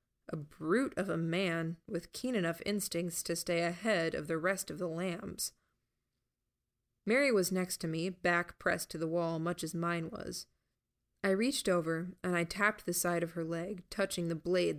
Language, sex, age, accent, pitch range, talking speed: English, female, 20-39, American, 165-200 Hz, 185 wpm